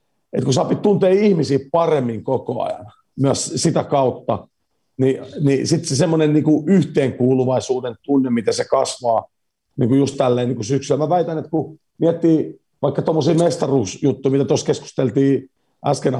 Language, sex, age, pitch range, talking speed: Finnish, male, 50-69, 125-150 Hz, 140 wpm